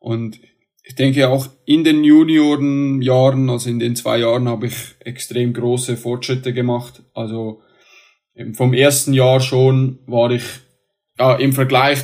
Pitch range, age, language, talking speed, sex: 120-130 Hz, 20-39, German, 140 wpm, male